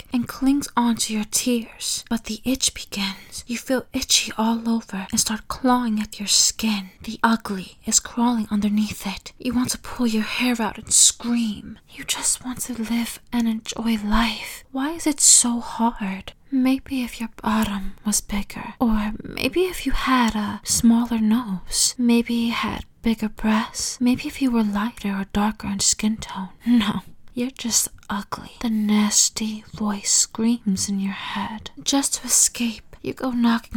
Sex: female